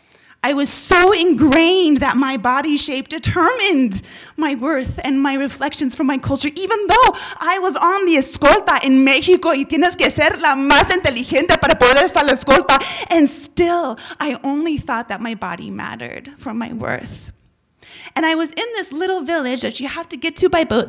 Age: 20-39